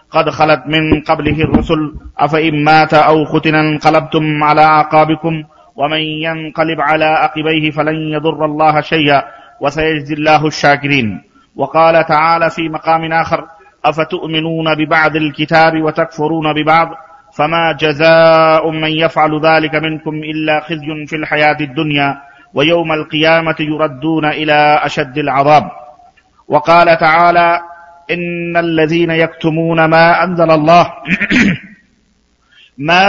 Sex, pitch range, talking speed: male, 155-170 Hz, 110 wpm